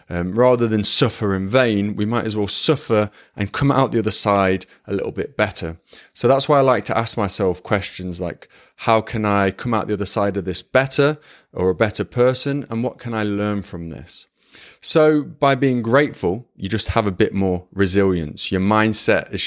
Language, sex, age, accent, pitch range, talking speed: English, male, 20-39, British, 95-120 Hz, 205 wpm